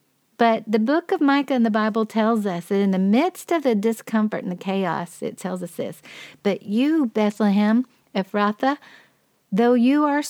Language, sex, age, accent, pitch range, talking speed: English, female, 50-69, American, 200-255 Hz, 180 wpm